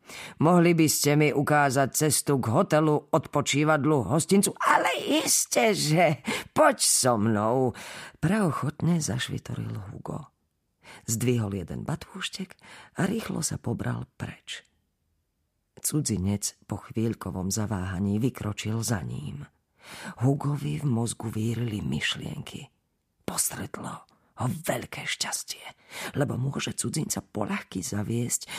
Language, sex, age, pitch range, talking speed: Slovak, female, 40-59, 105-155 Hz, 95 wpm